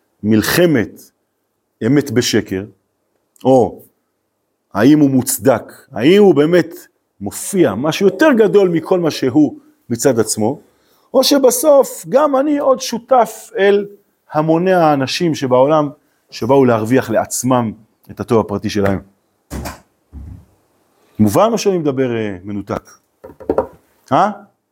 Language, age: Hebrew, 40-59